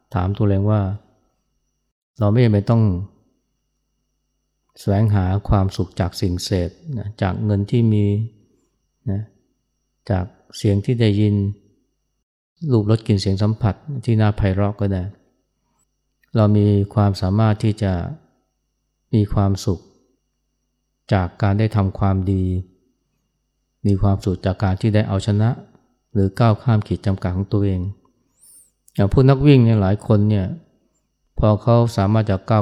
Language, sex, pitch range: Thai, male, 95-110 Hz